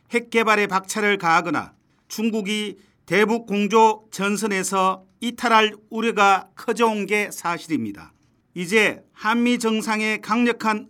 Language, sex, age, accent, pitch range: Korean, male, 40-59, native, 195-230 Hz